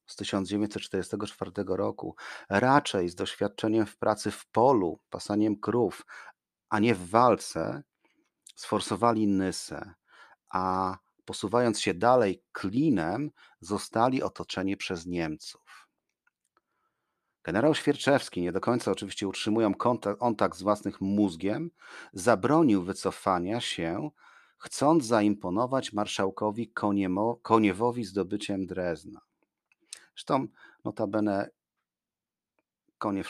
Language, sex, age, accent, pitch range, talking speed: Polish, male, 40-59, native, 95-115 Hz, 90 wpm